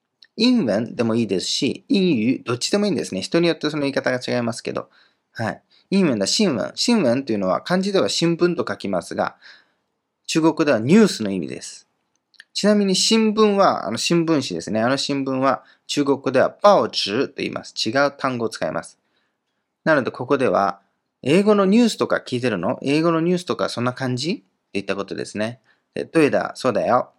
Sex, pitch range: male, 115-170 Hz